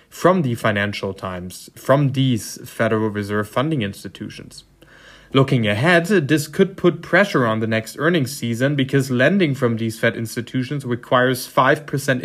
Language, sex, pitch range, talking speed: English, male, 110-135 Hz, 140 wpm